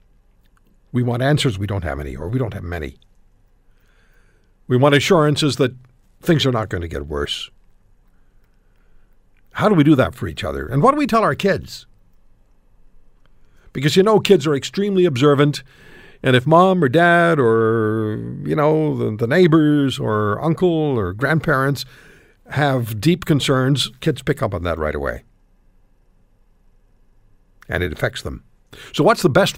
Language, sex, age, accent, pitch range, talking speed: English, male, 60-79, American, 105-150 Hz, 155 wpm